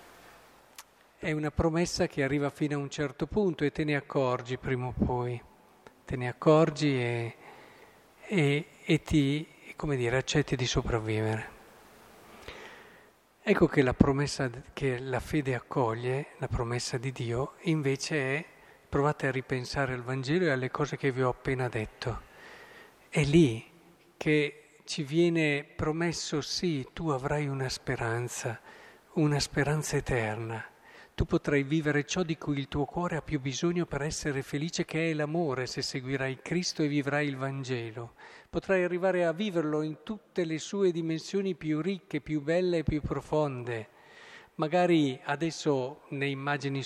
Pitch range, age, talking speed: 135-165 Hz, 50-69, 145 wpm